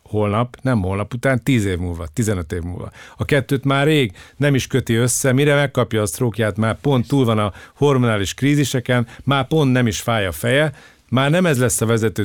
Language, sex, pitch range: Hungarian, male, 110-135 Hz